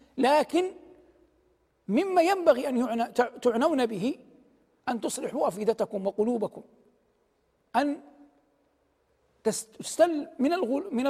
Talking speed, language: 70 wpm, Arabic